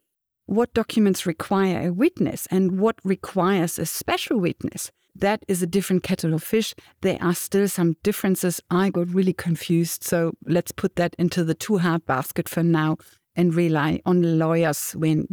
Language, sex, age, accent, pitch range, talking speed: English, female, 50-69, German, 165-210 Hz, 170 wpm